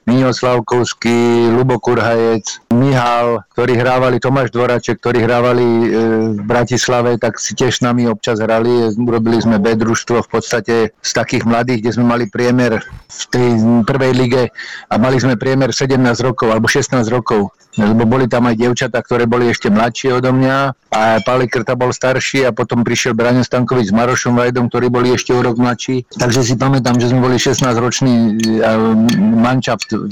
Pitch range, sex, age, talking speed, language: 115-130 Hz, male, 50-69, 165 wpm, Slovak